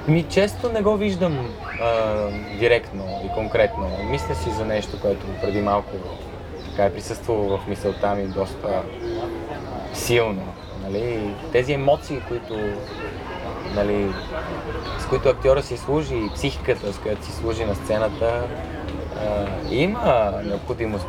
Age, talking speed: 20-39, 130 wpm